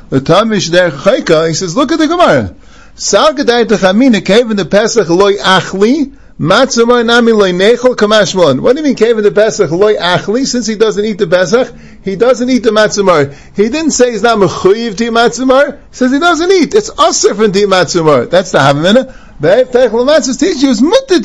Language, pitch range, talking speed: English, 170-255 Hz, 190 wpm